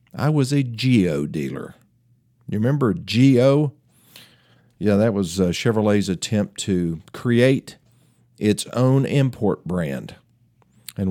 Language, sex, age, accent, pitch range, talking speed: English, male, 50-69, American, 100-135 Hz, 115 wpm